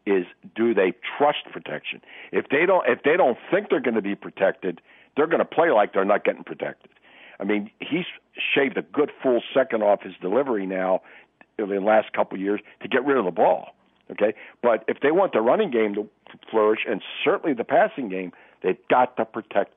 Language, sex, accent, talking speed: English, male, American, 210 wpm